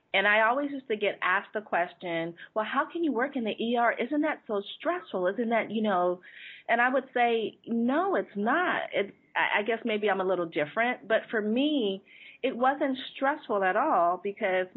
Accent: American